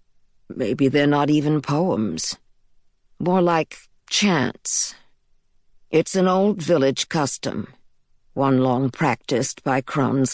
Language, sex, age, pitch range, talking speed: English, female, 50-69, 130-170 Hz, 105 wpm